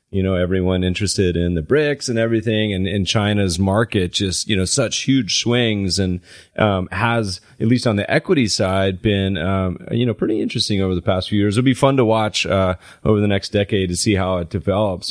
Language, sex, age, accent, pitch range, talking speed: English, male, 30-49, American, 100-120 Hz, 215 wpm